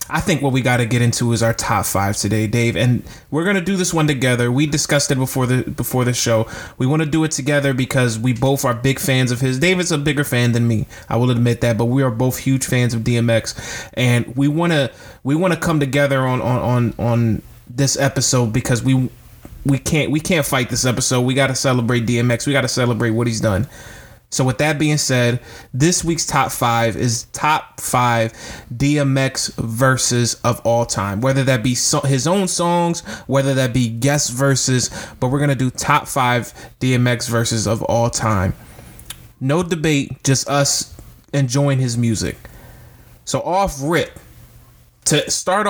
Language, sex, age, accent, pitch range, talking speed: English, male, 20-39, American, 120-140 Hz, 195 wpm